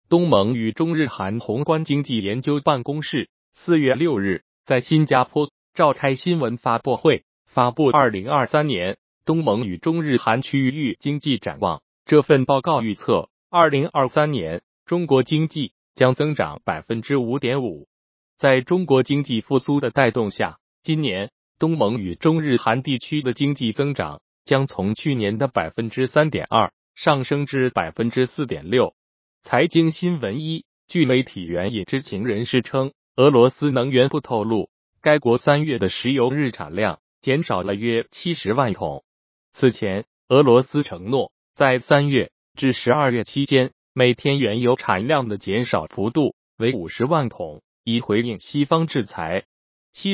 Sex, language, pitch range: male, Chinese, 115-150 Hz